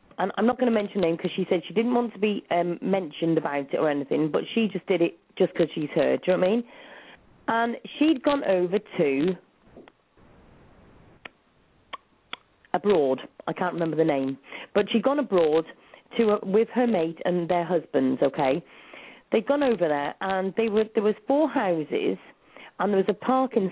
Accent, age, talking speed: British, 40-59, 195 wpm